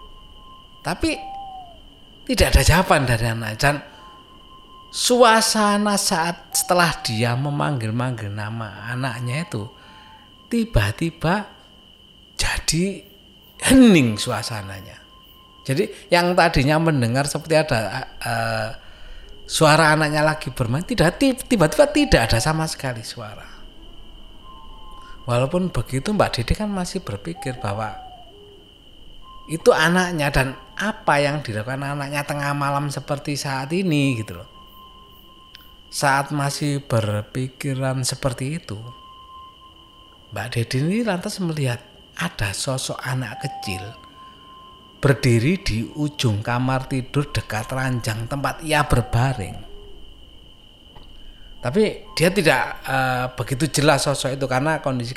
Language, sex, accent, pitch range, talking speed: Indonesian, male, native, 115-165 Hz, 100 wpm